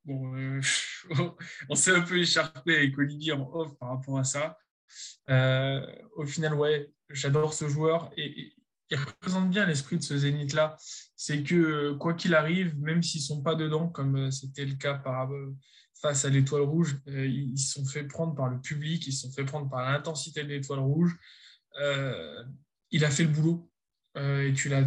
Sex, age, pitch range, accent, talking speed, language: male, 20-39, 135-160 Hz, French, 190 wpm, French